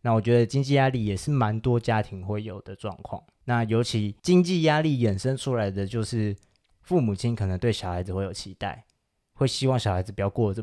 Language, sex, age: Chinese, male, 20-39